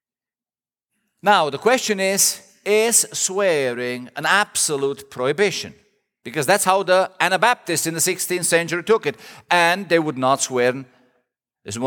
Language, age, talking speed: English, 50-69, 130 wpm